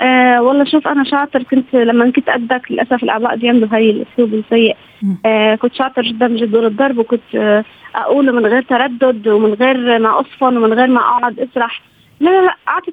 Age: 20-39